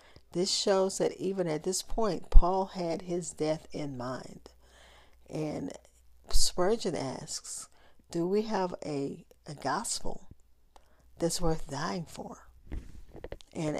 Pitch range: 145-180 Hz